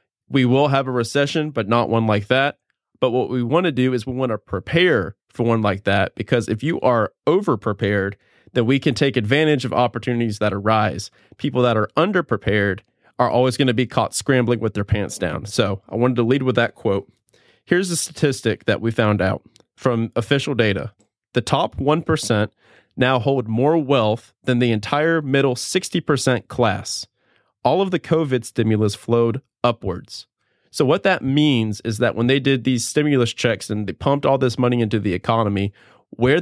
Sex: male